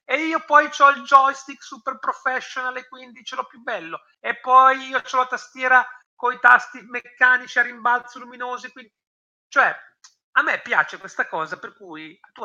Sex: male